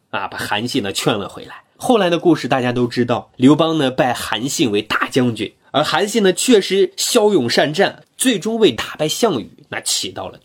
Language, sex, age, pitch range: Chinese, male, 20-39, 125-200 Hz